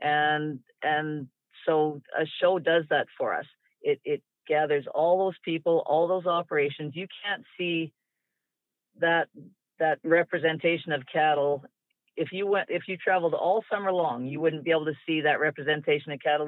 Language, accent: English, American